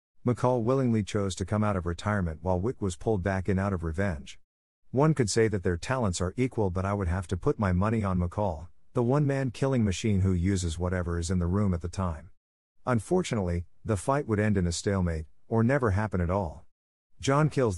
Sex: male